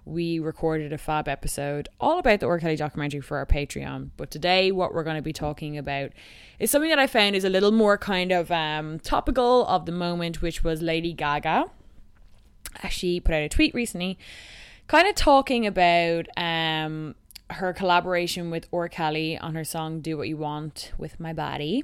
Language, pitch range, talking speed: English, 155-180 Hz, 185 wpm